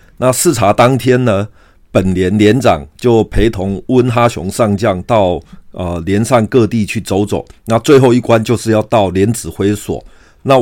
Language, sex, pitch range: Chinese, male, 95-115 Hz